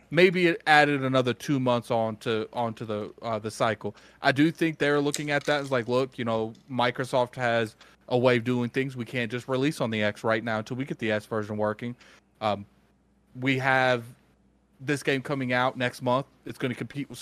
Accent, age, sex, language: American, 30-49, male, English